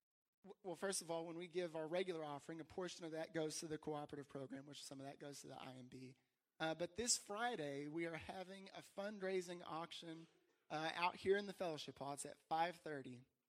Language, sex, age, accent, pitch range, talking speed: English, male, 30-49, American, 145-170 Hz, 210 wpm